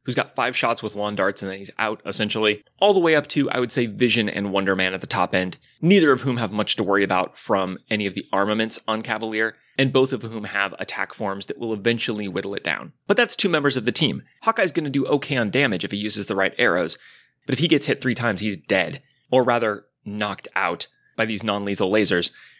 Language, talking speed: English, 245 wpm